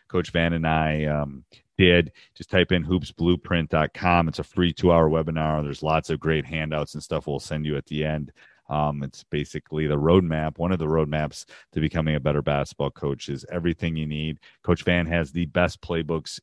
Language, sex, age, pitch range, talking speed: English, male, 30-49, 75-85 Hz, 195 wpm